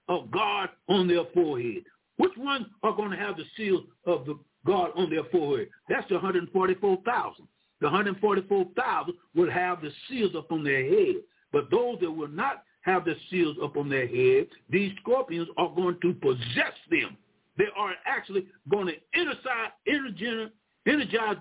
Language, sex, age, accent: English, male, 60-79, American